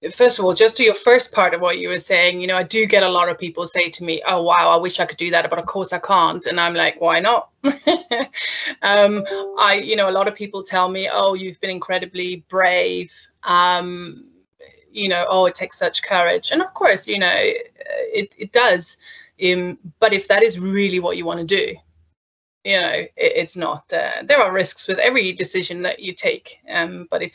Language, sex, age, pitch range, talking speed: English, female, 20-39, 175-220 Hz, 225 wpm